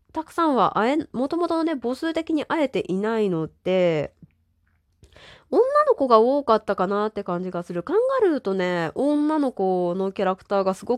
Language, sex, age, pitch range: Japanese, female, 20-39, 160-215 Hz